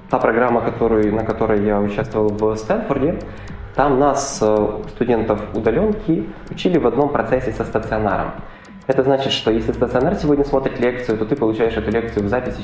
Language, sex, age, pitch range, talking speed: Ukrainian, male, 20-39, 105-130 Hz, 155 wpm